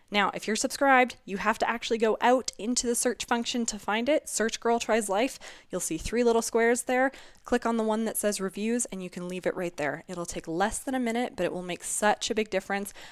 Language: English